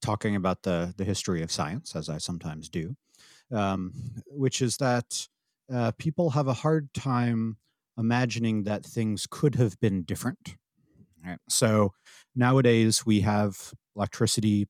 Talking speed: 140 wpm